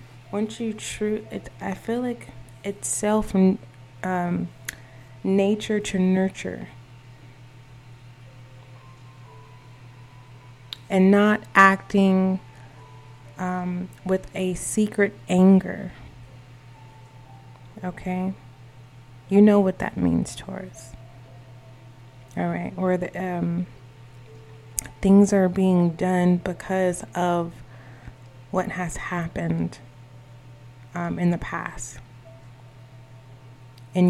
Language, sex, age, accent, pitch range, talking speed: English, female, 20-39, American, 125-180 Hz, 80 wpm